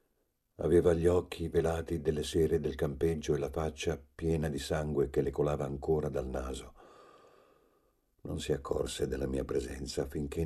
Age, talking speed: 50-69, 155 wpm